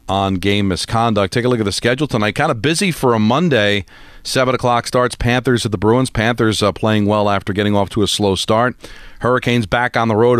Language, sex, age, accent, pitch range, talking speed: English, male, 40-59, American, 105-120 Hz, 225 wpm